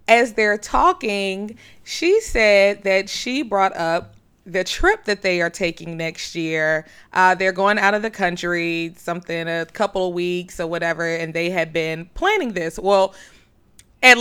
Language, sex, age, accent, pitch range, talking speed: English, female, 20-39, American, 175-230 Hz, 165 wpm